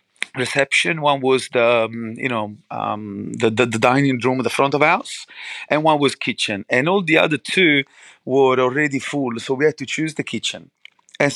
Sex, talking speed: male, 190 wpm